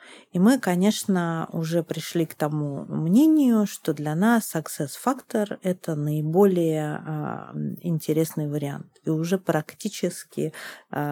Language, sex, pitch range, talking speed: Russian, female, 155-195 Hz, 105 wpm